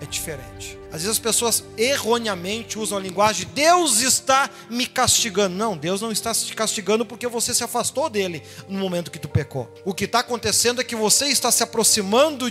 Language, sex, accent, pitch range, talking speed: Portuguese, male, Brazilian, 160-235 Hz, 190 wpm